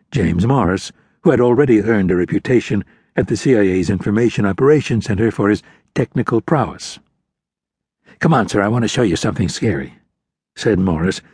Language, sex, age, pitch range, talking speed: English, male, 60-79, 100-130 Hz, 160 wpm